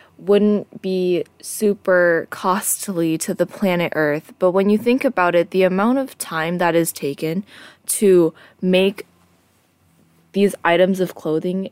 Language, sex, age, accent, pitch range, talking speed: English, female, 20-39, American, 170-215 Hz, 140 wpm